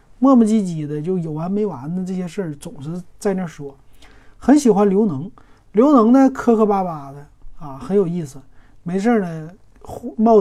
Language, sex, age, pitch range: Chinese, male, 30-49, 150-220 Hz